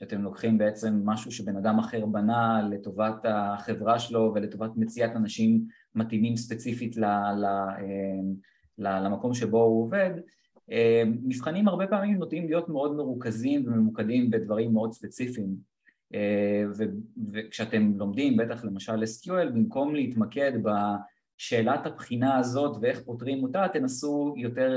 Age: 20-39